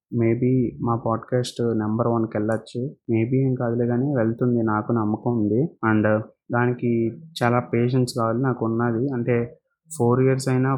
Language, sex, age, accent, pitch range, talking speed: Telugu, male, 20-39, native, 110-125 Hz, 105 wpm